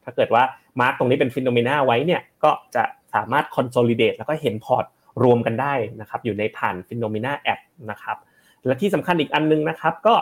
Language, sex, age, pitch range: Thai, male, 20-39, 120-165 Hz